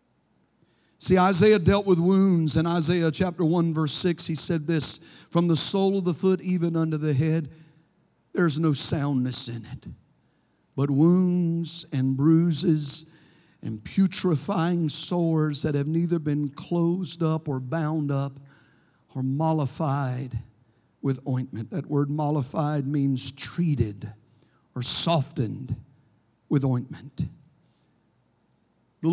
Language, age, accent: English, 50-69, American